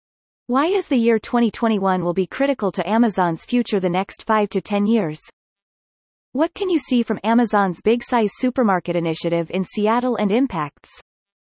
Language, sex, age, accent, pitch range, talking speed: English, female, 30-49, American, 185-240 Hz, 155 wpm